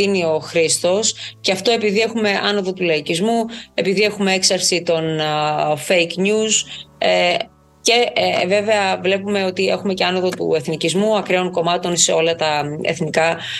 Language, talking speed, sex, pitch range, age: Greek, 130 wpm, female, 170-220 Hz, 30-49